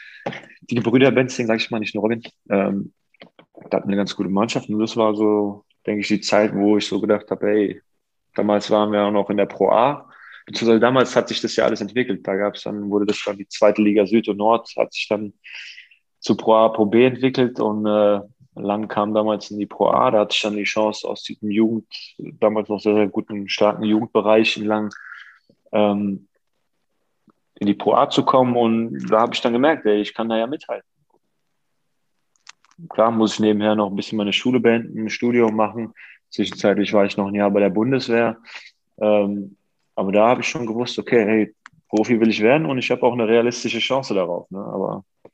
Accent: German